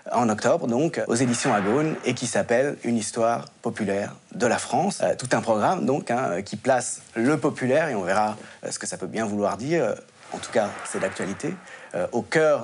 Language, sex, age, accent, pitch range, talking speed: French, male, 30-49, French, 115-160 Hz, 210 wpm